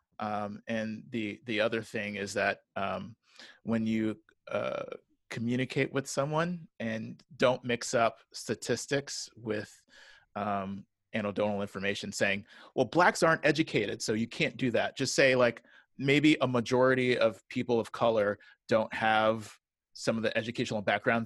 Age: 30-49